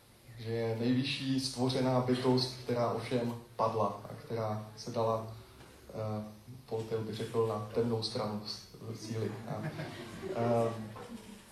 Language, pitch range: Czech, 115-135 Hz